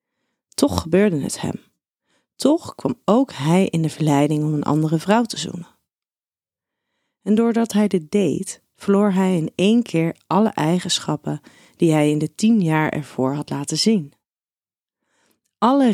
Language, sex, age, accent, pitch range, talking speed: Dutch, female, 30-49, Dutch, 150-200 Hz, 150 wpm